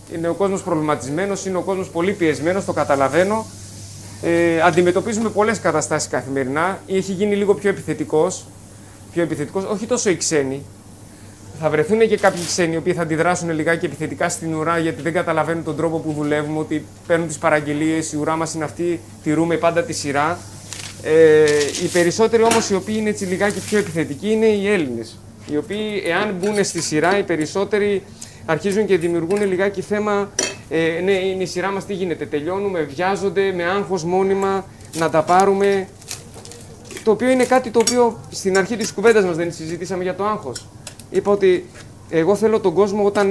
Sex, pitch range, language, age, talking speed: male, 150-195 Hz, Greek, 30-49, 190 wpm